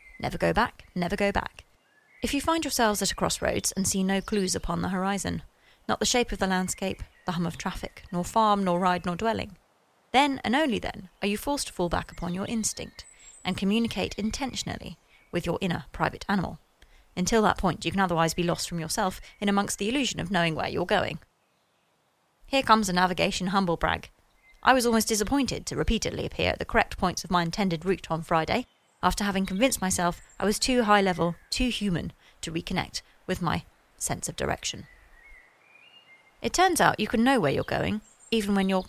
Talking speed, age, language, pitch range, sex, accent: 195 wpm, 30-49, English, 180-225 Hz, female, British